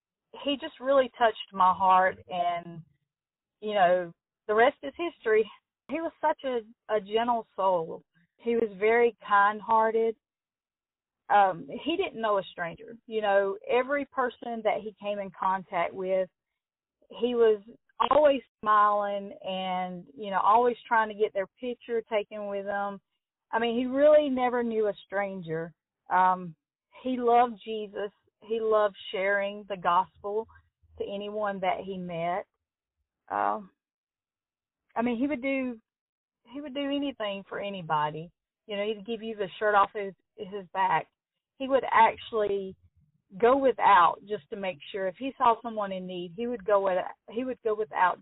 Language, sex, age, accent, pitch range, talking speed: English, female, 30-49, American, 185-235 Hz, 155 wpm